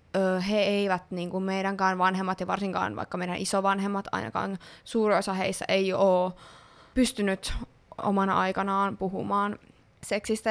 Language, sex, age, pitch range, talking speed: Finnish, female, 20-39, 190-210 Hz, 125 wpm